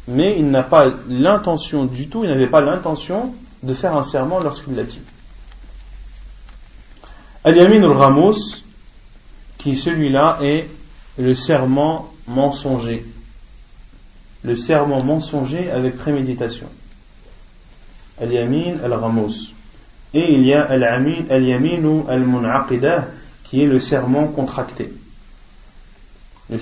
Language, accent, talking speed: French, French, 105 wpm